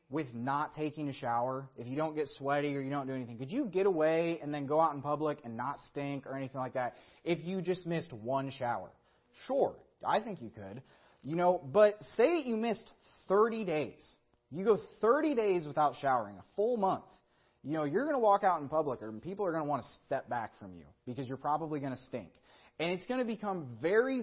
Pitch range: 140-195 Hz